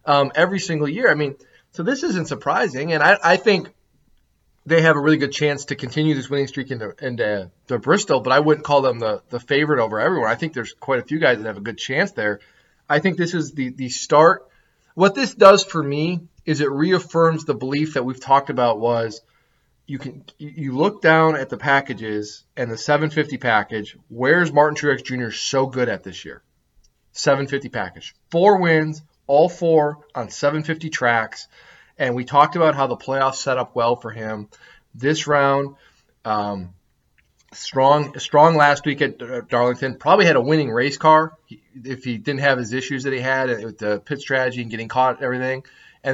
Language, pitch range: English, 125-155 Hz